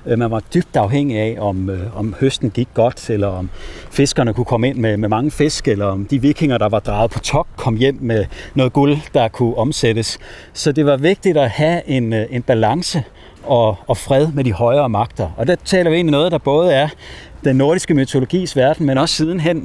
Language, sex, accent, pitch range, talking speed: Danish, male, native, 115-150 Hz, 210 wpm